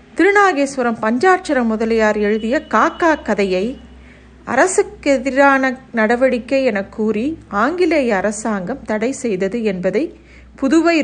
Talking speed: 90 wpm